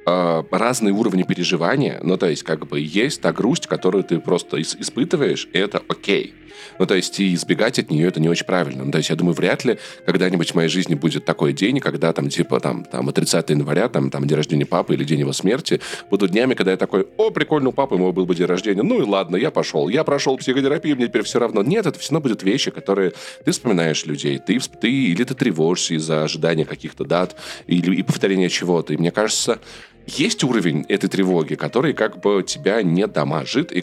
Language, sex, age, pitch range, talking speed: Russian, male, 20-39, 80-110 Hz, 220 wpm